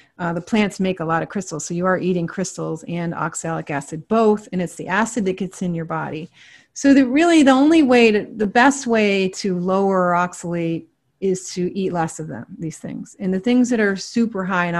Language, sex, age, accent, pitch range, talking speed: English, female, 30-49, American, 175-225 Hz, 225 wpm